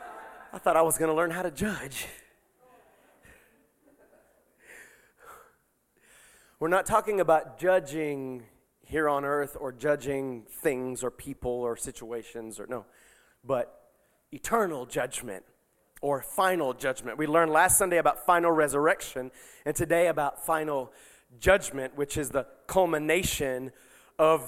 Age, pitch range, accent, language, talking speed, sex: 30-49, 145-235 Hz, American, English, 125 wpm, male